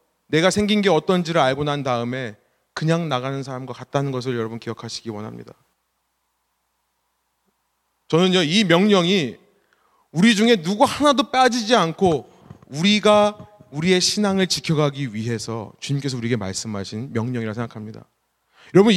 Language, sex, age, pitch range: Korean, male, 30-49, 150-220 Hz